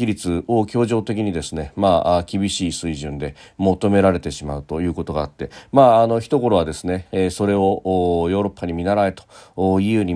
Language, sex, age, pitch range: Japanese, male, 40-59, 85-110 Hz